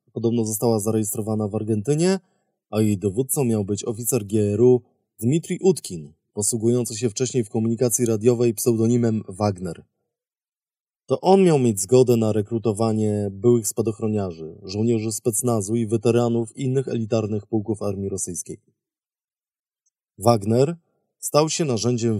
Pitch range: 105-125 Hz